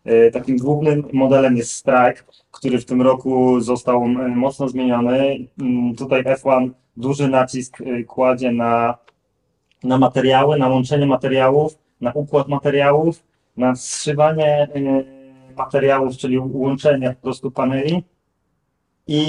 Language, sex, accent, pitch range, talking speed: Polish, male, native, 125-135 Hz, 105 wpm